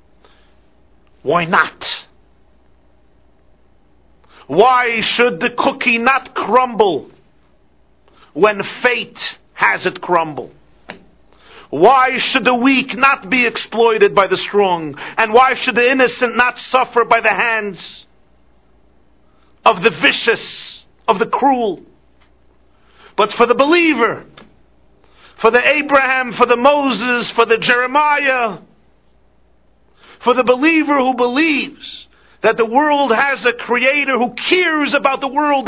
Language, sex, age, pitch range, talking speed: English, male, 50-69, 205-300 Hz, 115 wpm